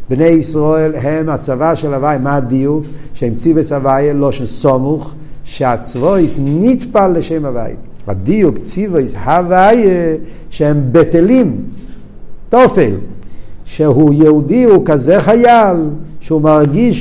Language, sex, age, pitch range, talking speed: Hebrew, male, 50-69, 120-160 Hz, 115 wpm